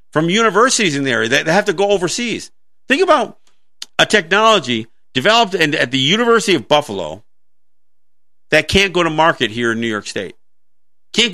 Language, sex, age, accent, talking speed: English, male, 50-69, American, 165 wpm